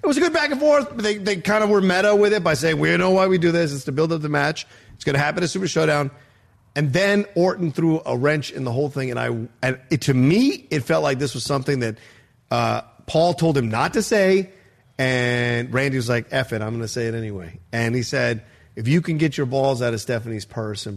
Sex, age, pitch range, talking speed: male, 40-59, 130-180 Hz, 265 wpm